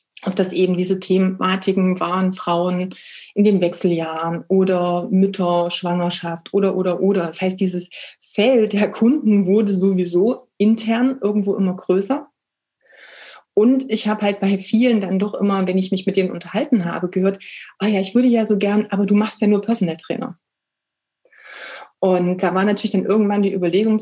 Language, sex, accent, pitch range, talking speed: German, female, German, 185-235 Hz, 170 wpm